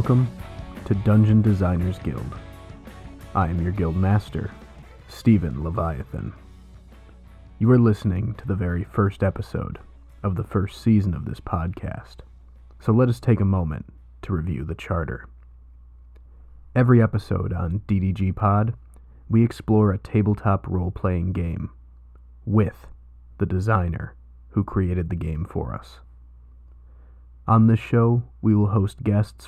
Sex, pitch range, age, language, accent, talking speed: male, 75-105 Hz, 30-49, English, American, 130 wpm